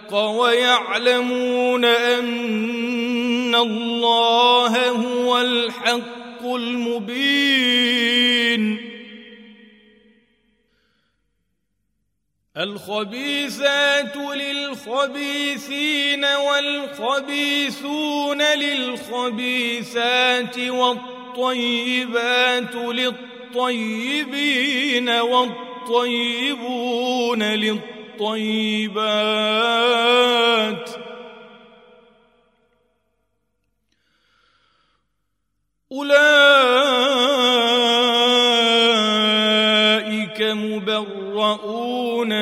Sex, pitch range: male, 230-250 Hz